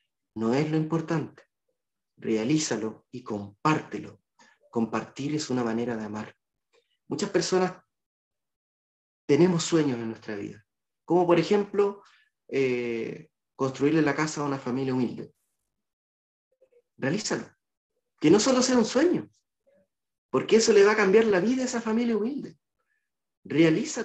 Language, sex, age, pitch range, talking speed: English, male, 40-59, 125-200 Hz, 125 wpm